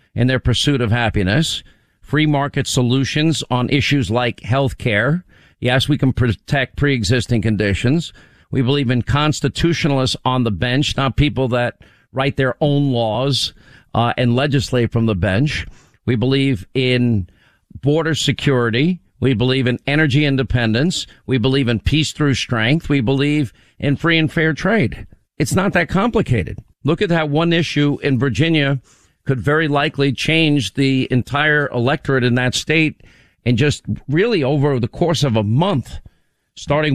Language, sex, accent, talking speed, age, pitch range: English, male, American, 150 wpm, 50-69, 120-150 Hz